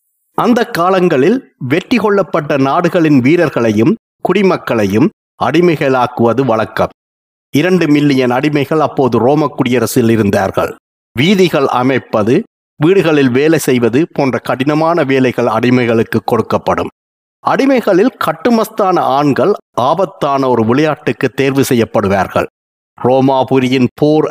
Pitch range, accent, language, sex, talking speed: 120-155 Hz, native, Tamil, male, 90 wpm